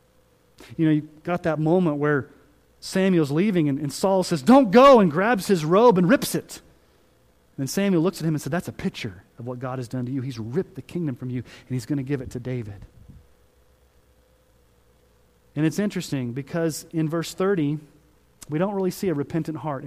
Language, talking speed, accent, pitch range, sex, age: English, 200 wpm, American, 130-190 Hz, male, 40-59